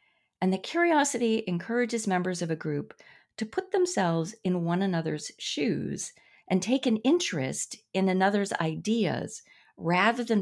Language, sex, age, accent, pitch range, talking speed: English, female, 40-59, American, 155-230 Hz, 140 wpm